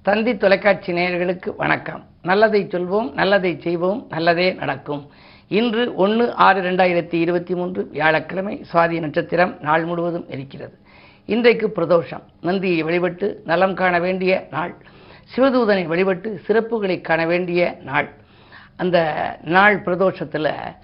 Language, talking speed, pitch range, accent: Tamil, 110 wpm, 165-200 Hz, native